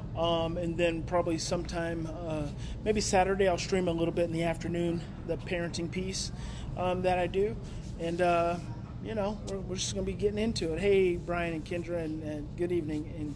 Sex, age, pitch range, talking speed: male, 30-49, 155-185 Hz, 200 wpm